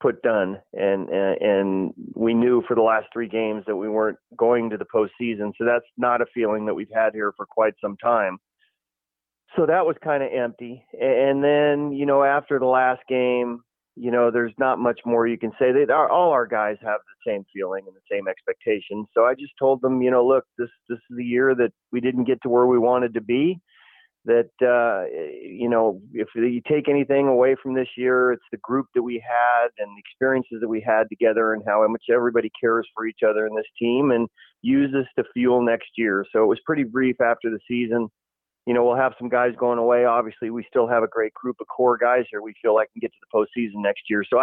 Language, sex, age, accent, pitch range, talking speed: English, male, 30-49, American, 115-130 Hz, 235 wpm